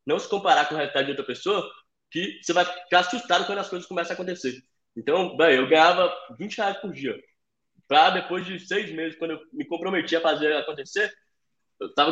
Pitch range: 160-240 Hz